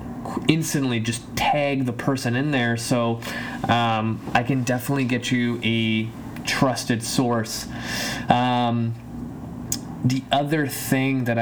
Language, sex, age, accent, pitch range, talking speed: English, male, 20-39, American, 115-135 Hz, 115 wpm